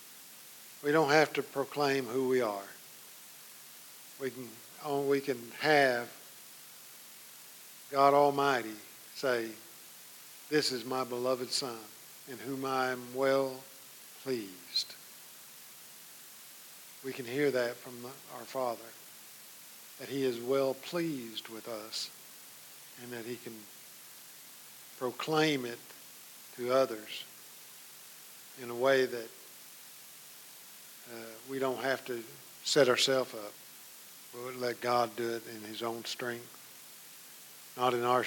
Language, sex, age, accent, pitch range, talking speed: English, male, 50-69, American, 120-140 Hz, 120 wpm